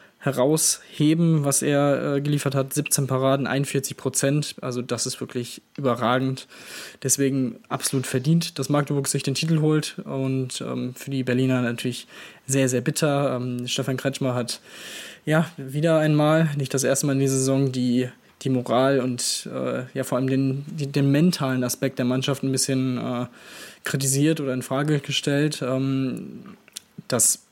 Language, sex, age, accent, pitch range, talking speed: German, male, 20-39, German, 130-145 Hz, 155 wpm